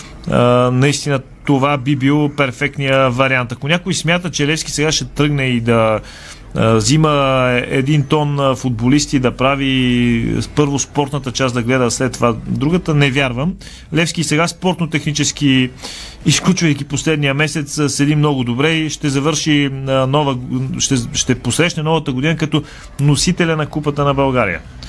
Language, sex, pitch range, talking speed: Bulgarian, male, 130-155 Hz, 135 wpm